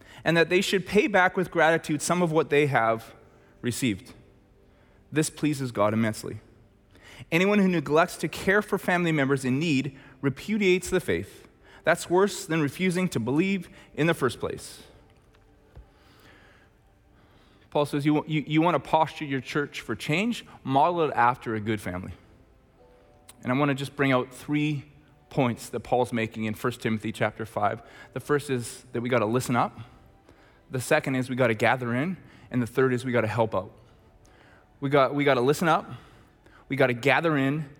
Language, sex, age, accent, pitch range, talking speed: English, male, 20-39, American, 110-150 Hz, 180 wpm